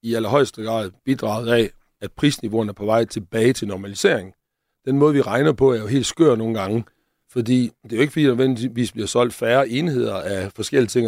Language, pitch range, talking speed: Danish, 110-130 Hz, 205 wpm